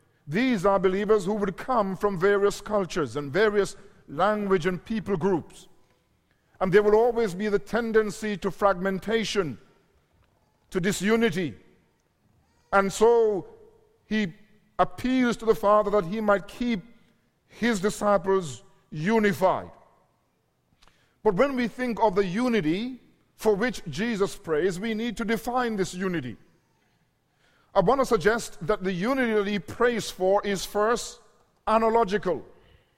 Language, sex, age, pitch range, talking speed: English, male, 50-69, 190-225 Hz, 130 wpm